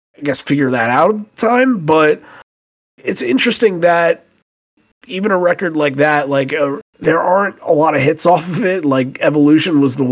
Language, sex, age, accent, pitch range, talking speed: English, male, 30-49, American, 120-145 Hz, 190 wpm